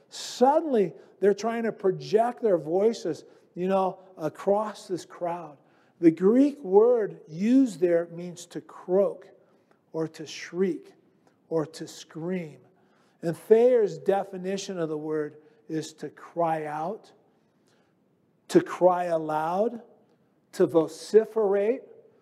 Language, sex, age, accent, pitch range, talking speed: English, male, 50-69, American, 155-205 Hz, 110 wpm